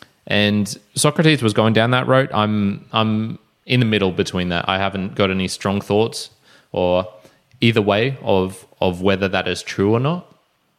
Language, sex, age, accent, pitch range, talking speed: English, male, 20-39, Australian, 90-105 Hz, 170 wpm